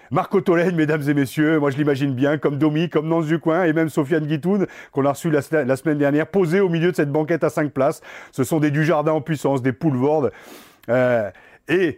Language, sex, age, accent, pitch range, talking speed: French, male, 40-59, French, 135-165 Hz, 220 wpm